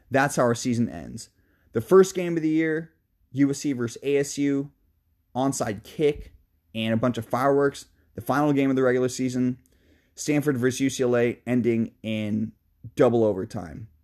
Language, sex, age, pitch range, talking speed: English, male, 20-39, 105-140 Hz, 150 wpm